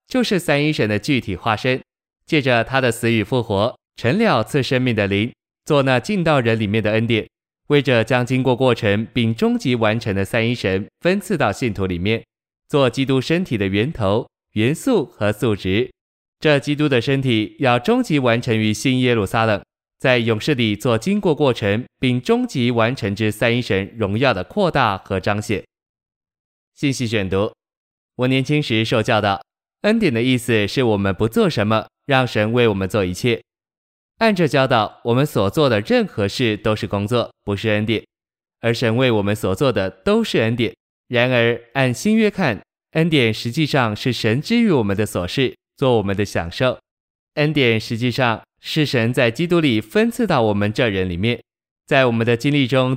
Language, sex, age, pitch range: Chinese, male, 20-39, 105-135 Hz